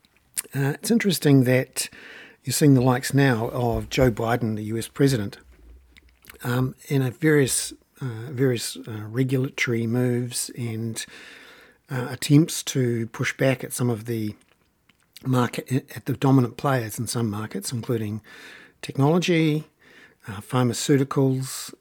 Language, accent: English, Australian